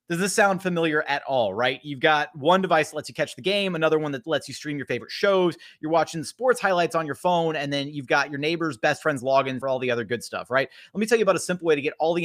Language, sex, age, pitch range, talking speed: English, male, 30-49, 135-170 Hz, 305 wpm